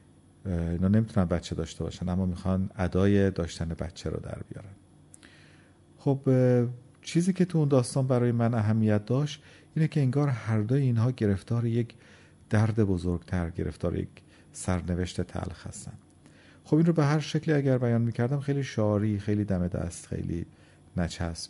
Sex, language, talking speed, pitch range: male, Persian, 150 wpm, 90-115 Hz